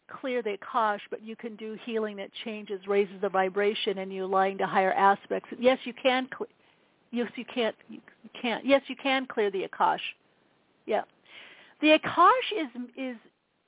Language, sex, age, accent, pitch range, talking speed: English, female, 50-69, American, 205-270 Hz, 170 wpm